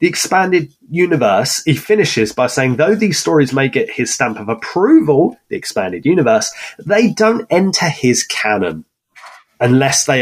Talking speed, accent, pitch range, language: 155 wpm, British, 130-180 Hz, English